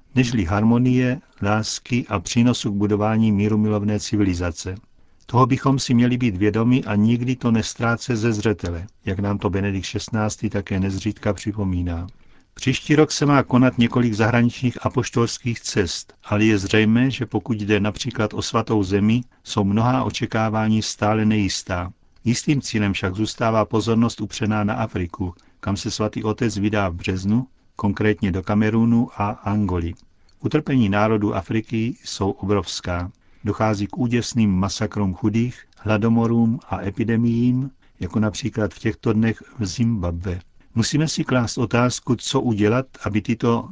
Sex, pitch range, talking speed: male, 100-120 Hz, 140 wpm